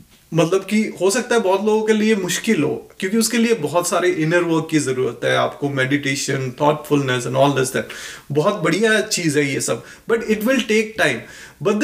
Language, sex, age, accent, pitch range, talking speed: Hindi, male, 30-49, native, 155-210 Hz, 200 wpm